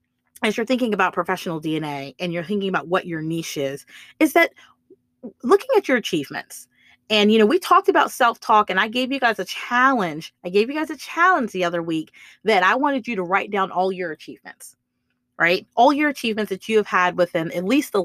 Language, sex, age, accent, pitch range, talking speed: English, female, 30-49, American, 180-270 Hz, 215 wpm